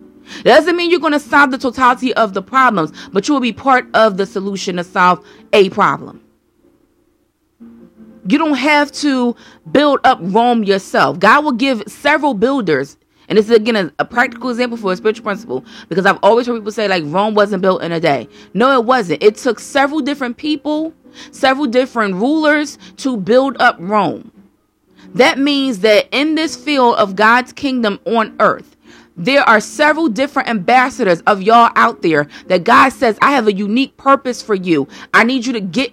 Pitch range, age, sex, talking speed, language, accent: 210-275 Hz, 30-49, female, 185 wpm, English, American